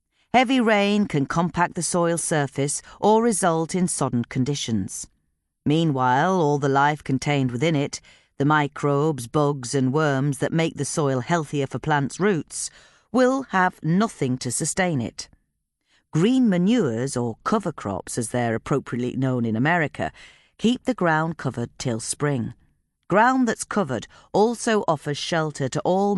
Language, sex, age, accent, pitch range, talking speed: English, female, 40-59, British, 130-180 Hz, 145 wpm